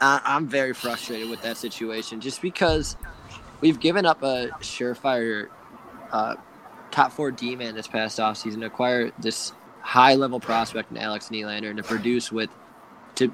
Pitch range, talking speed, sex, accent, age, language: 115-135 Hz, 150 wpm, male, American, 20-39, English